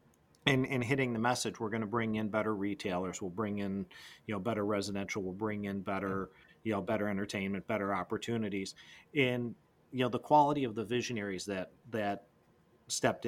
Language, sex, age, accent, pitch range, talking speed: English, male, 40-59, American, 100-115 Hz, 180 wpm